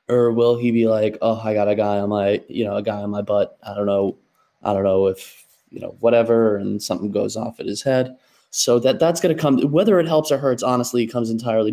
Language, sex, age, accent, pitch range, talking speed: English, male, 20-39, American, 110-140 Hz, 260 wpm